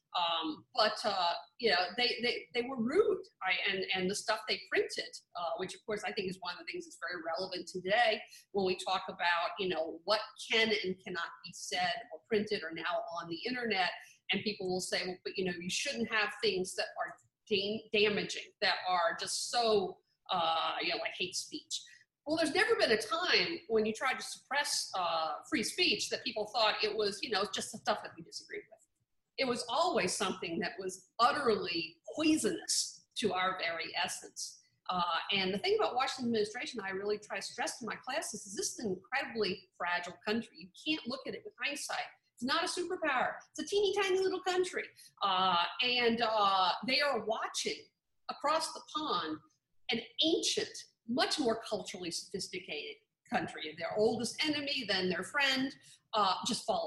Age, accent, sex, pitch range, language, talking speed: 50-69, American, female, 190-300 Hz, English, 190 wpm